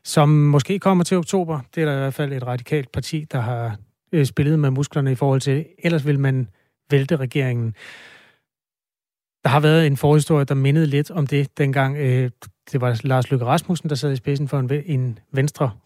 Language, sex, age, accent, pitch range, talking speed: Danish, male, 30-49, native, 130-170 Hz, 195 wpm